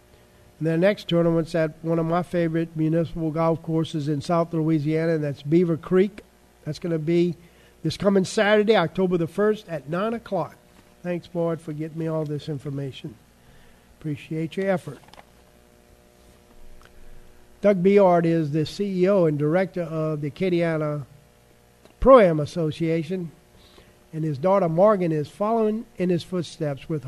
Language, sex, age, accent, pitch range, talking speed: English, male, 50-69, American, 150-180 Hz, 140 wpm